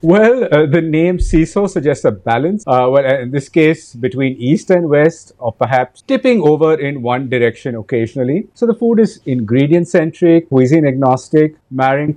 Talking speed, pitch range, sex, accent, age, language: 165 wpm, 125-165 Hz, male, Indian, 50-69, English